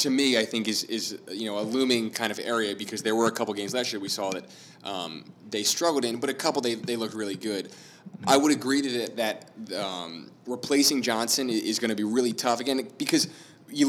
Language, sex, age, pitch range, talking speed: English, male, 20-39, 110-130 Hz, 235 wpm